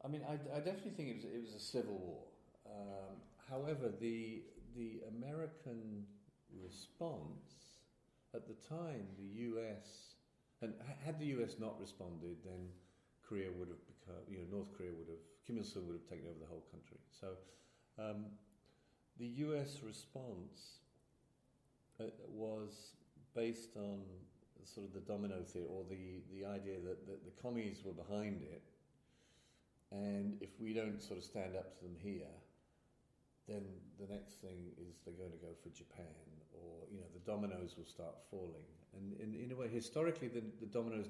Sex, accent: male, British